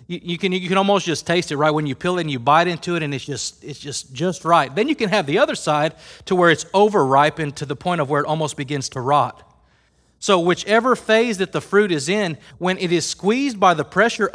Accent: American